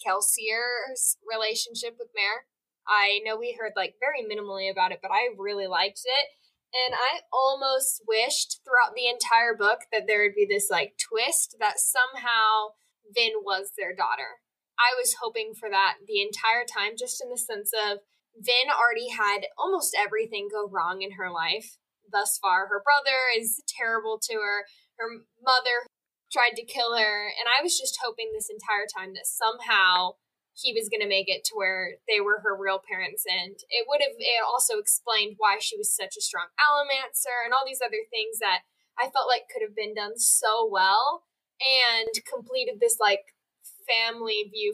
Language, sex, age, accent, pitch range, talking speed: English, female, 10-29, American, 205-290 Hz, 180 wpm